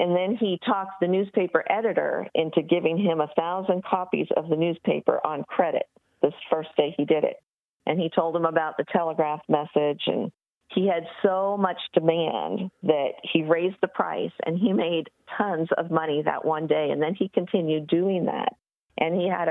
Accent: American